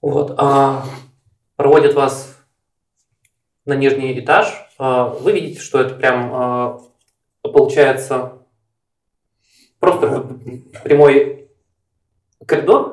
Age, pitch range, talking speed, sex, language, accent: 20-39, 125-145 Hz, 70 wpm, male, Russian, native